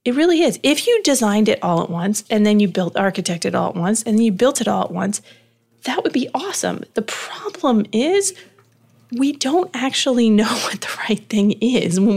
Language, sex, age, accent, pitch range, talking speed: English, female, 30-49, American, 195-255 Hz, 215 wpm